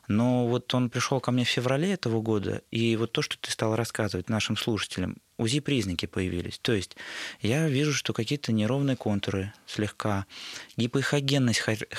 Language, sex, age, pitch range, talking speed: Russian, male, 20-39, 105-130 Hz, 155 wpm